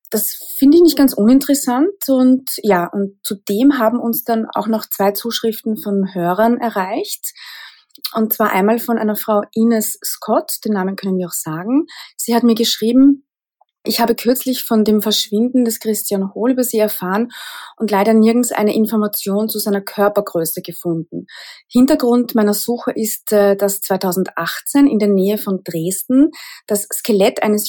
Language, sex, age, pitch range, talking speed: German, female, 30-49, 205-240 Hz, 160 wpm